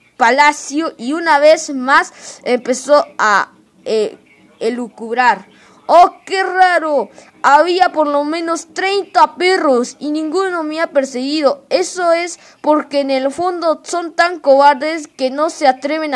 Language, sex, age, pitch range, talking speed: Spanish, female, 20-39, 230-295 Hz, 135 wpm